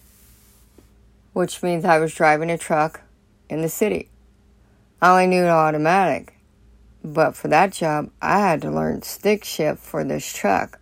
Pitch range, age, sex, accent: 155-185 Hz, 60-79, female, American